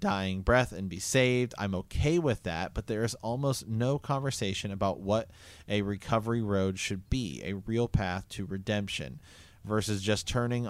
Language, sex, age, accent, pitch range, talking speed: English, male, 30-49, American, 100-120 Hz, 170 wpm